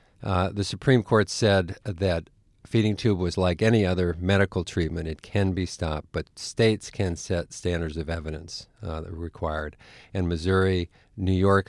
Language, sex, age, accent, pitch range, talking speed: English, male, 50-69, American, 80-100 Hz, 170 wpm